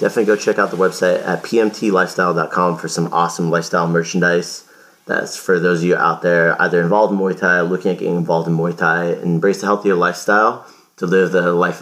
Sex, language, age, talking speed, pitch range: male, English, 30-49, 210 wpm, 90-100 Hz